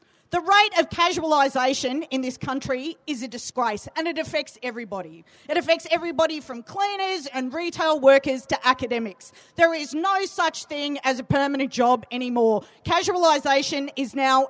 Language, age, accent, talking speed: English, 40-59, Australian, 155 wpm